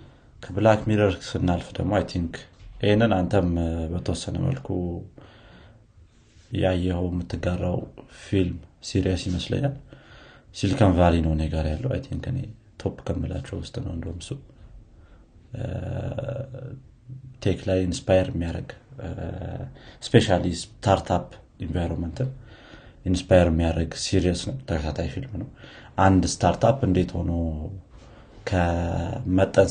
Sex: male